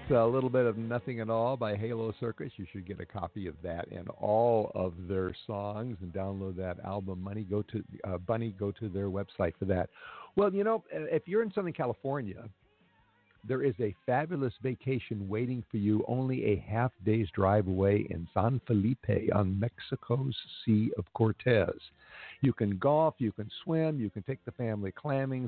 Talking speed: 185 wpm